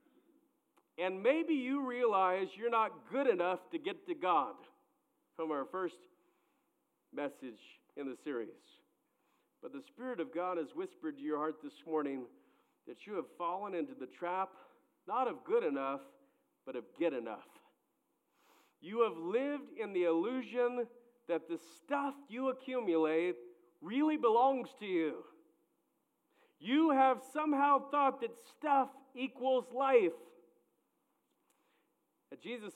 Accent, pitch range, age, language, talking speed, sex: American, 175-280 Hz, 50-69, English, 130 wpm, male